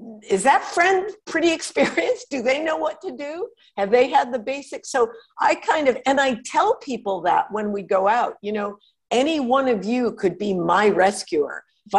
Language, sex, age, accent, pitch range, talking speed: English, female, 50-69, American, 190-280 Hz, 200 wpm